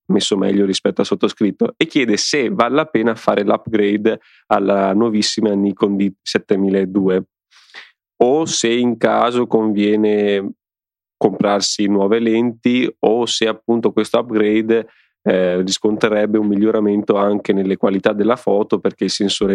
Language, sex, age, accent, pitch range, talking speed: Italian, male, 20-39, native, 95-110 Hz, 130 wpm